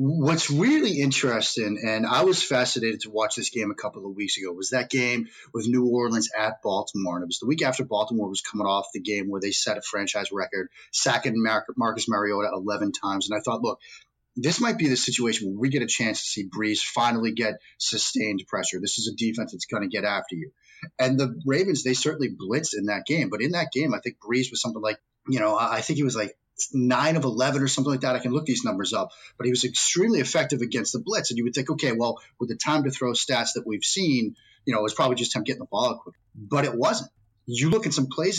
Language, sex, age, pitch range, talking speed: English, male, 30-49, 110-135 Hz, 245 wpm